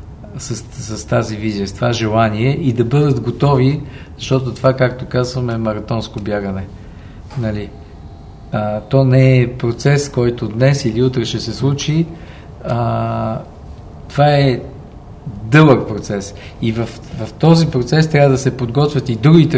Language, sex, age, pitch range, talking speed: Bulgarian, male, 50-69, 105-135 Hz, 145 wpm